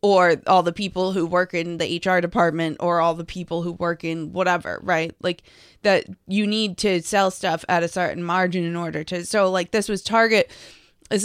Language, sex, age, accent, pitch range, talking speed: English, female, 20-39, American, 180-210 Hz, 210 wpm